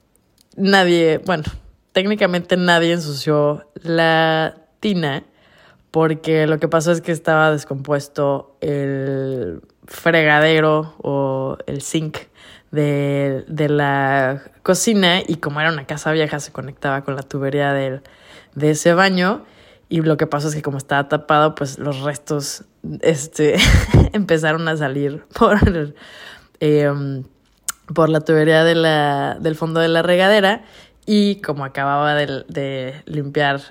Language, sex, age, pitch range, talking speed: Spanish, female, 20-39, 140-165 Hz, 130 wpm